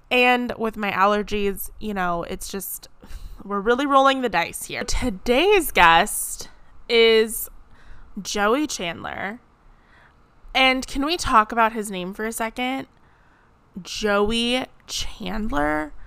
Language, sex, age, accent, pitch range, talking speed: English, female, 20-39, American, 195-240 Hz, 115 wpm